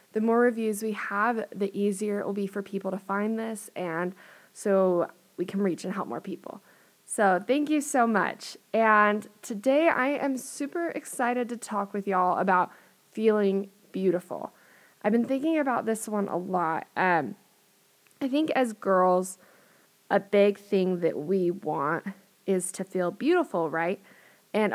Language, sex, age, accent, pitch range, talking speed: English, female, 20-39, American, 185-225 Hz, 160 wpm